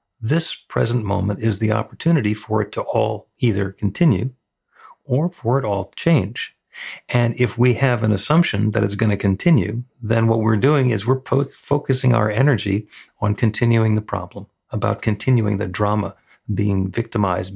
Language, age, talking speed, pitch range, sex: English, 40-59, 160 wpm, 100-120 Hz, male